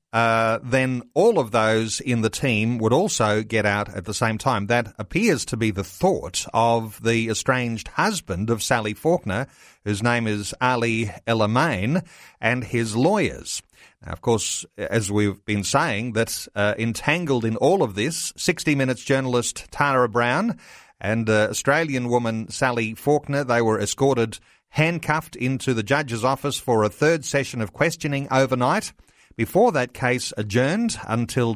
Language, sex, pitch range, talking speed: English, male, 110-130 Hz, 155 wpm